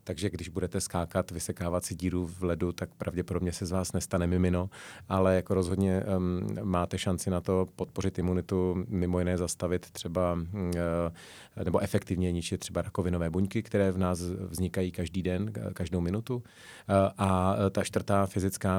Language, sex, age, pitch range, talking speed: Czech, male, 30-49, 90-95 Hz, 160 wpm